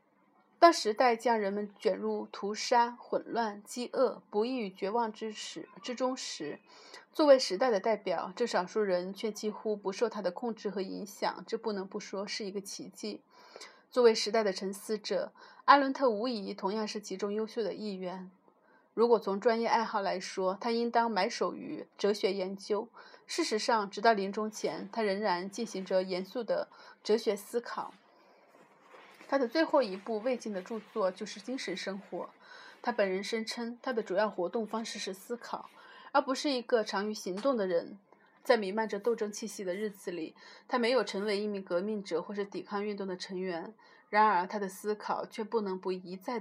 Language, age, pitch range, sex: Chinese, 30-49, 195-245 Hz, female